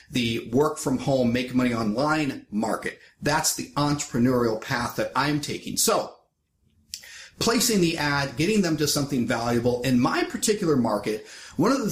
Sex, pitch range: male, 125-170 Hz